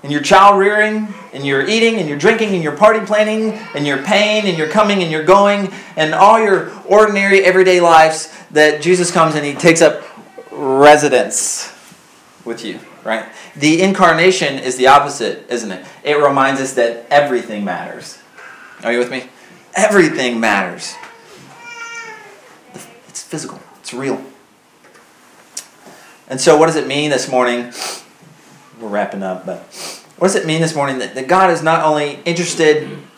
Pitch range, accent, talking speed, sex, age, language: 140-190 Hz, American, 160 wpm, male, 30-49, English